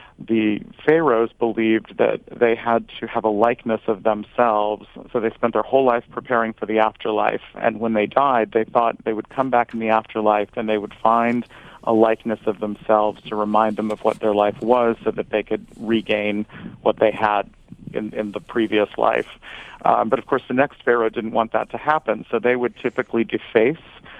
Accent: American